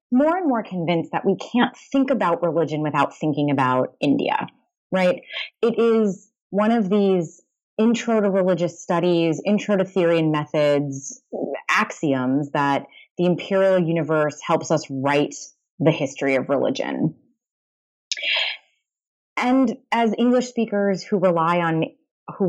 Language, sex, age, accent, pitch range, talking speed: English, female, 20-39, American, 155-230 Hz, 130 wpm